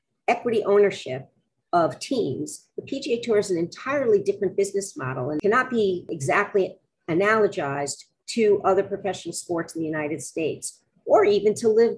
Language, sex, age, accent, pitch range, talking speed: English, female, 50-69, American, 175-225 Hz, 150 wpm